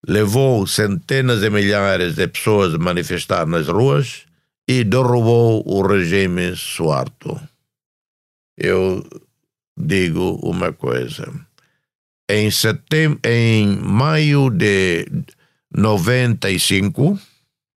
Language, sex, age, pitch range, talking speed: Portuguese, male, 60-79, 100-135 Hz, 80 wpm